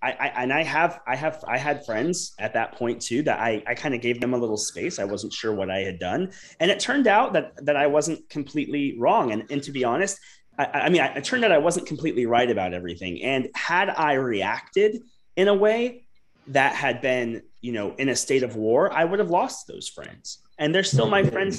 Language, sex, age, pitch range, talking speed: English, male, 30-49, 115-160 Hz, 240 wpm